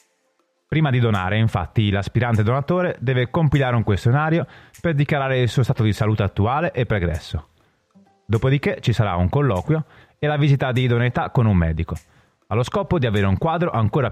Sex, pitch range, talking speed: male, 105-150 Hz, 170 wpm